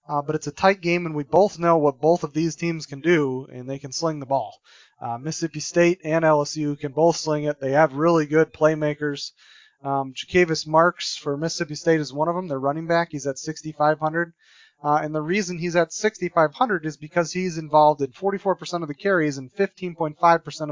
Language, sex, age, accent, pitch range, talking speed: English, male, 30-49, American, 140-170 Hz, 205 wpm